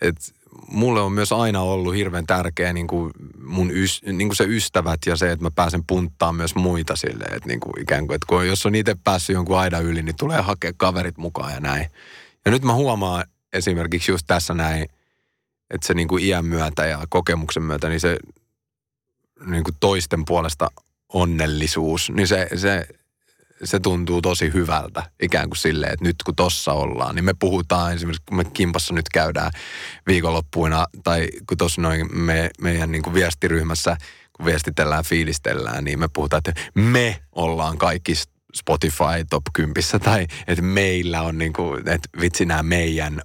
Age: 30-49